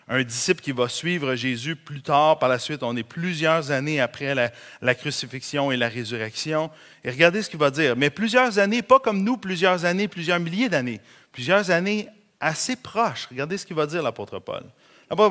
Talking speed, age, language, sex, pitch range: 205 wpm, 30-49, French, male, 135-185 Hz